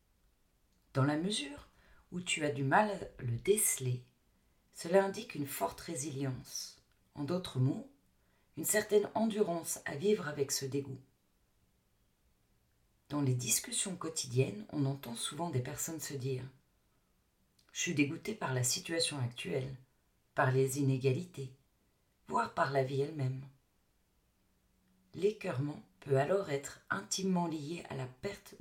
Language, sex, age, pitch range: French, female, 40-59, 135-190 Hz